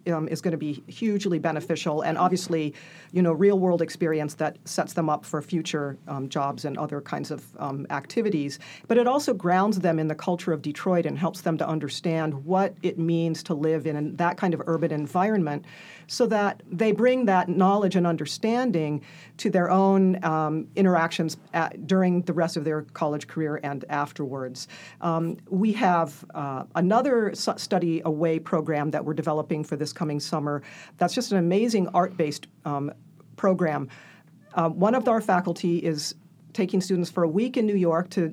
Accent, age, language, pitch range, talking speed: American, 50-69, English, 155-190 Hz, 175 wpm